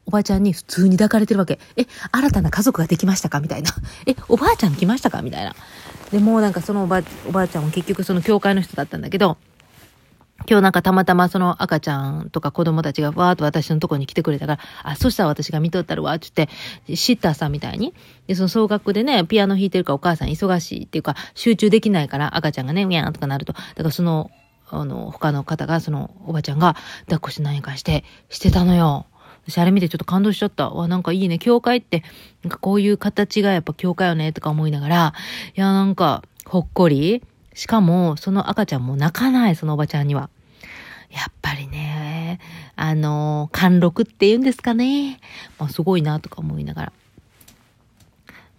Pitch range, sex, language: 150-195 Hz, female, Japanese